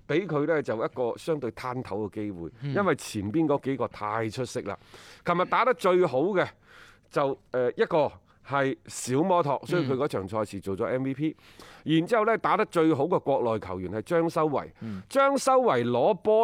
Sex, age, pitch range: male, 30-49, 120-175 Hz